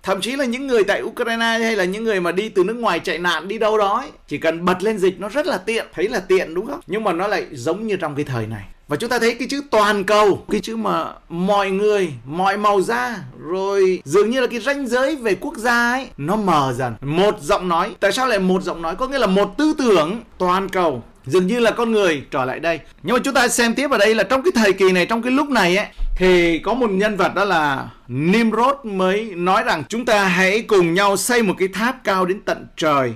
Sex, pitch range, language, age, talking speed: male, 180-240 Hz, Vietnamese, 30-49, 260 wpm